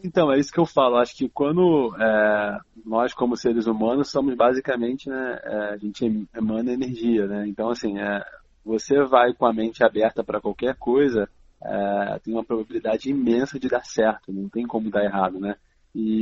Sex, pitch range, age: male, 110-130 Hz, 20-39